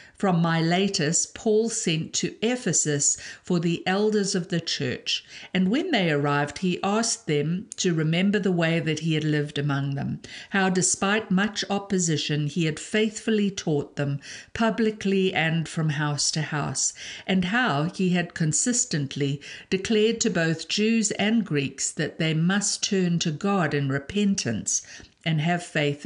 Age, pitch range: 60-79, 150-200 Hz